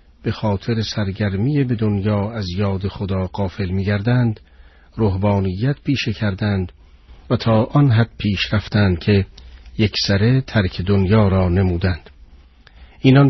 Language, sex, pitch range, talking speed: Persian, male, 90-110 Hz, 115 wpm